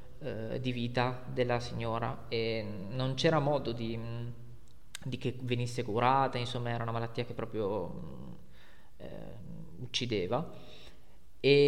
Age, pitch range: 20-39, 120-135 Hz